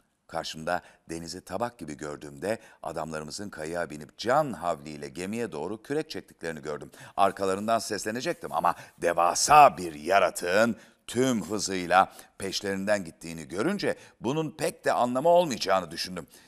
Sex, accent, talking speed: male, native, 115 wpm